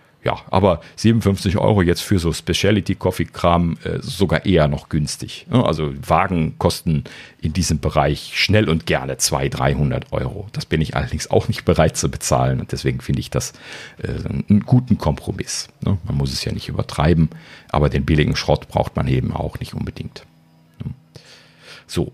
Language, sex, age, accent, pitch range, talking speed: German, male, 50-69, German, 80-115 Hz, 160 wpm